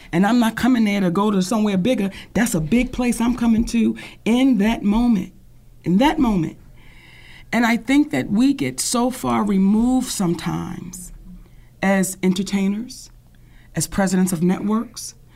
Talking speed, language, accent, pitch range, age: 150 wpm, English, American, 195-250 Hz, 40-59